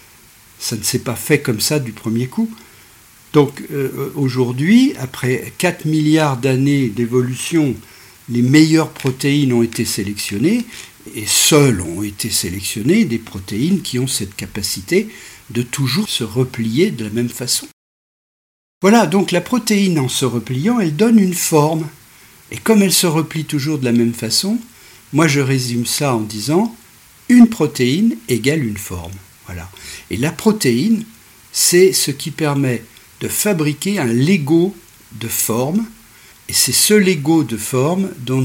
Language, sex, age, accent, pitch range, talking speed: French, male, 50-69, French, 110-155 Hz, 150 wpm